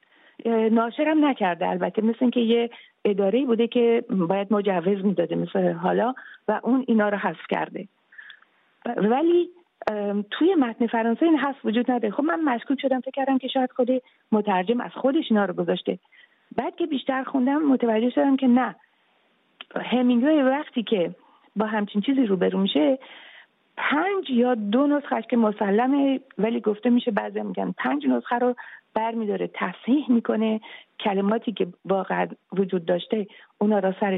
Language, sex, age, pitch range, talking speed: English, female, 40-59, 210-270 Hz, 145 wpm